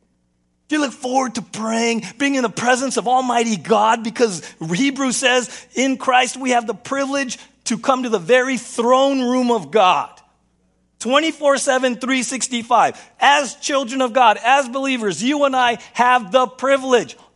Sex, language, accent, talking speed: male, English, American, 155 wpm